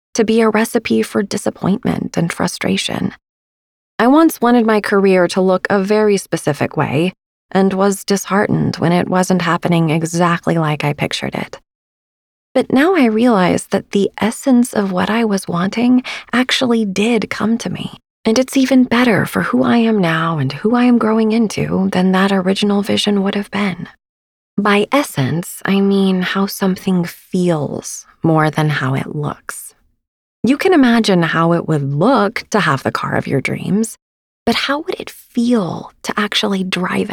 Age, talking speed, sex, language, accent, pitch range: 20-39, 170 wpm, female, English, American, 170-230 Hz